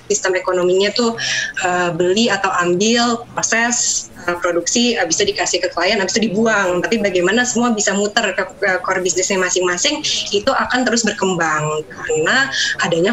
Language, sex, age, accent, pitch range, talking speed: Indonesian, female, 20-39, native, 175-235 Hz, 130 wpm